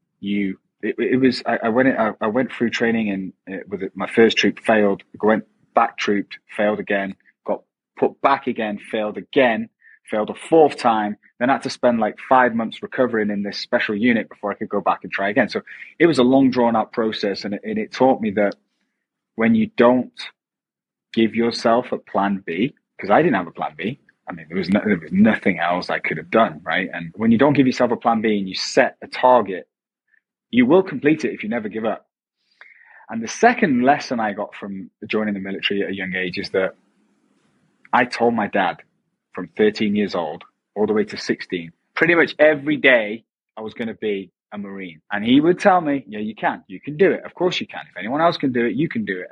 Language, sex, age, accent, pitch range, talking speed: English, male, 30-49, British, 105-155 Hz, 230 wpm